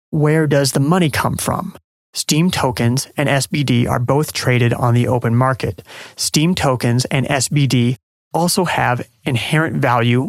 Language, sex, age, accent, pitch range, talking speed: English, male, 30-49, American, 120-155 Hz, 145 wpm